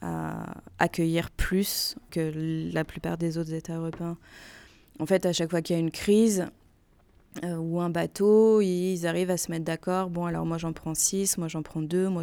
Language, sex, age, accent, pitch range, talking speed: French, female, 20-39, French, 160-180 Hz, 200 wpm